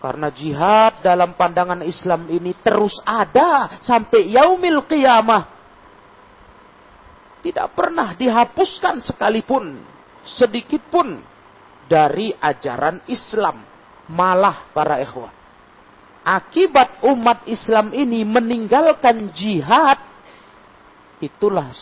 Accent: native